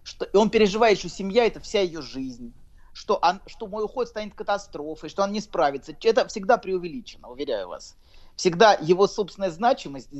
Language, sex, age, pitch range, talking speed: Russian, male, 30-49, 150-205 Hz, 165 wpm